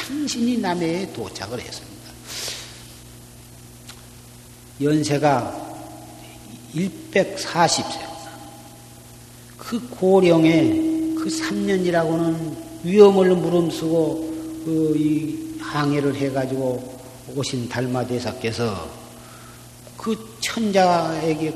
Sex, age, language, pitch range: male, 40-59, Korean, 125-165 Hz